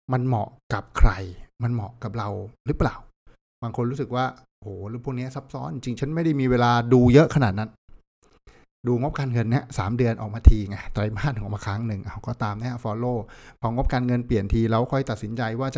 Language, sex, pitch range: Thai, male, 105-135 Hz